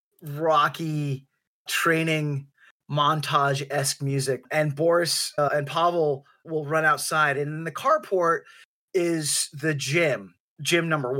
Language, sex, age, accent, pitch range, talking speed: English, male, 20-39, American, 155-180 Hz, 115 wpm